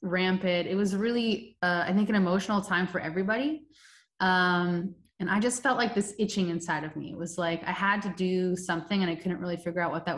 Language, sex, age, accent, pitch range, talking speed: English, female, 20-39, American, 170-200 Hz, 230 wpm